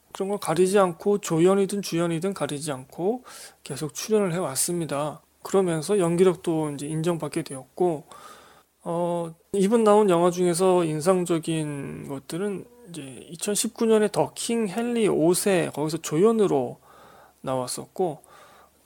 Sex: male